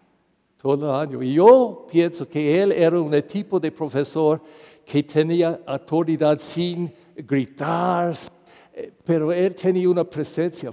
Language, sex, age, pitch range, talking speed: English, male, 60-79, 145-185 Hz, 130 wpm